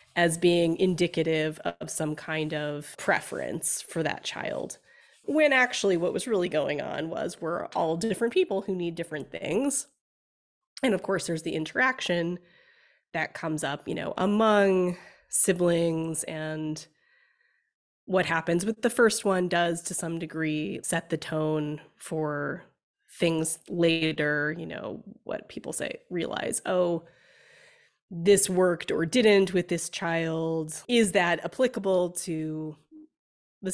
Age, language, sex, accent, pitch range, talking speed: 20-39, English, female, American, 160-195 Hz, 135 wpm